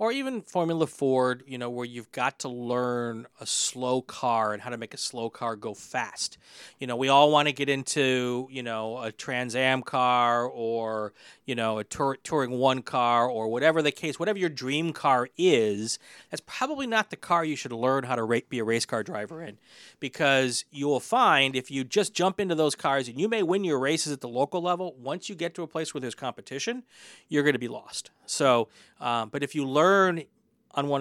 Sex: male